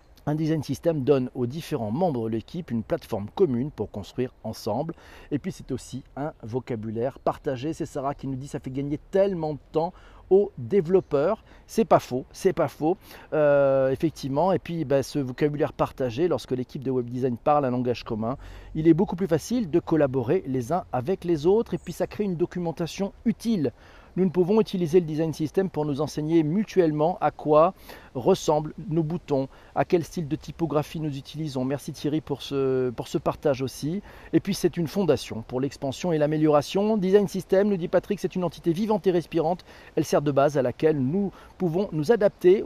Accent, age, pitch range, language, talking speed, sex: French, 40-59, 135-180 Hz, French, 195 wpm, male